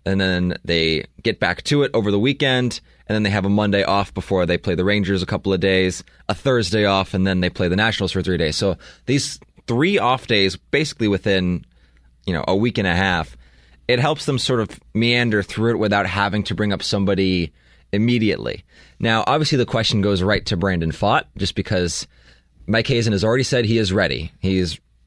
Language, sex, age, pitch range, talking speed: English, male, 20-39, 85-105 Hz, 210 wpm